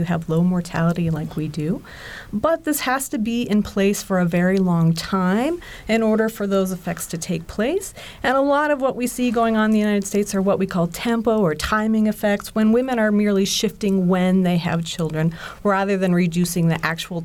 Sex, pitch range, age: female, 175-235 Hz, 40-59